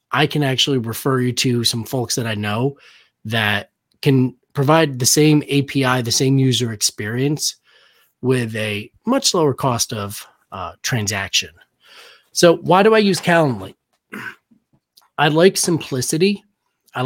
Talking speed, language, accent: 135 wpm, English, American